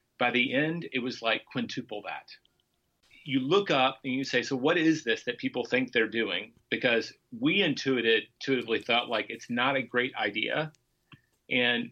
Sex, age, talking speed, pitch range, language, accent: male, 40-59, 170 wpm, 125-175 Hz, English, American